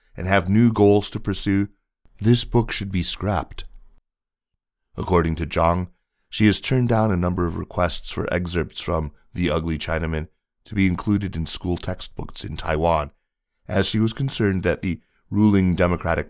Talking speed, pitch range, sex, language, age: 160 wpm, 85-110 Hz, male, English, 30-49